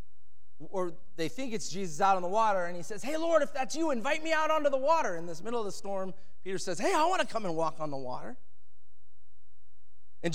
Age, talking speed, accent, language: 30-49, 245 wpm, American, English